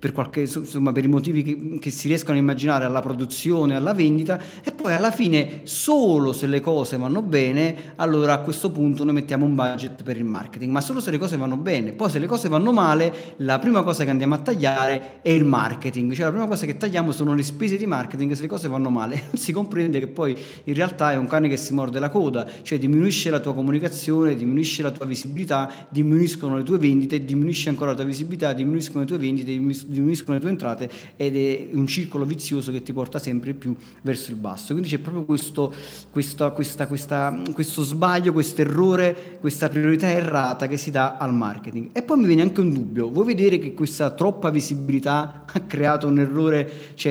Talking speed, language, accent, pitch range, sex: 215 wpm, Italian, native, 135-165 Hz, male